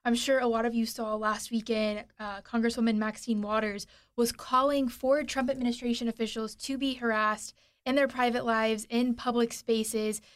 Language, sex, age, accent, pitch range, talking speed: English, female, 20-39, American, 215-245 Hz, 170 wpm